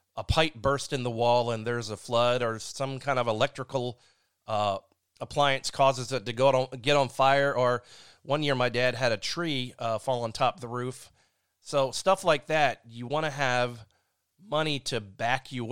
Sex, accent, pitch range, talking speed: male, American, 115-140 Hz, 200 wpm